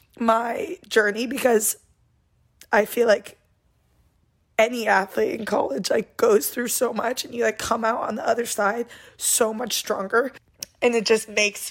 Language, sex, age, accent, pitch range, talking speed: English, female, 20-39, American, 210-230 Hz, 160 wpm